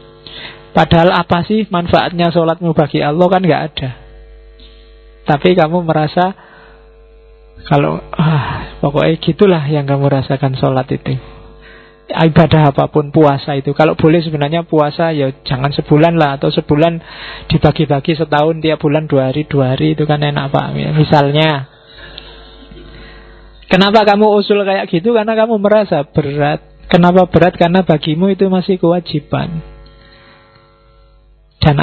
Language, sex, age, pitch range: Indonesian, male, 20-39, 145-180 Hz